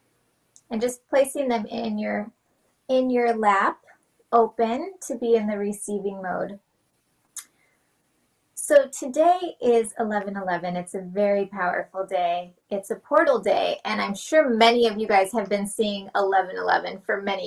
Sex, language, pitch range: female, English, 200-240 Hz